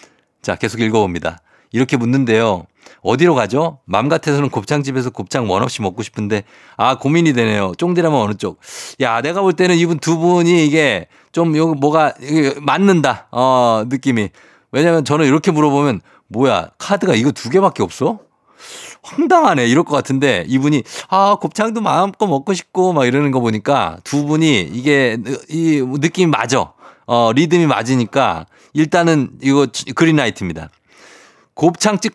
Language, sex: Korean, male